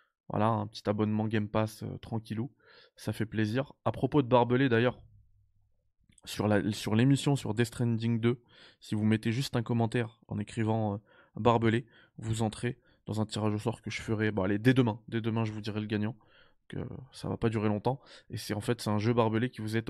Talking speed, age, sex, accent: 215 wpm, 20-39, male, French